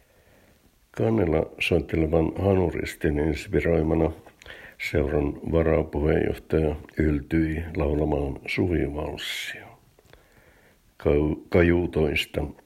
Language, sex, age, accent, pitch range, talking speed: Finnish, male, 60-79, native, 75-85 Hz, 45 wpm